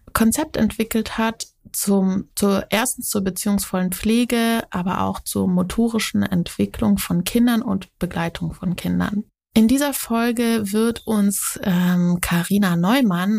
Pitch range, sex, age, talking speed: 180-220 Hz, female, 20-39, 125 wpm